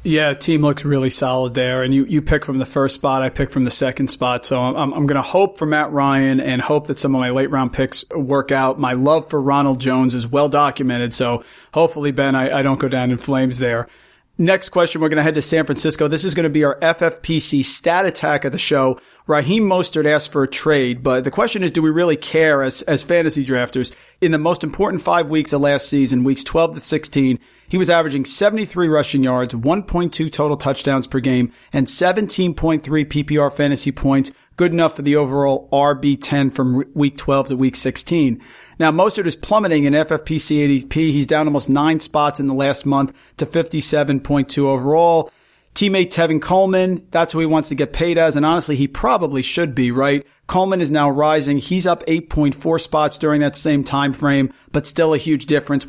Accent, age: American, 40-59